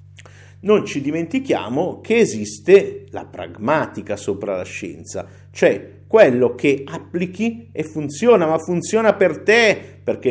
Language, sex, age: Italian, male, 50-69